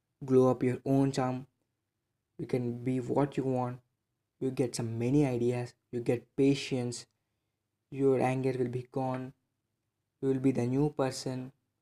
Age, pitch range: 20-39, 115-135 Hz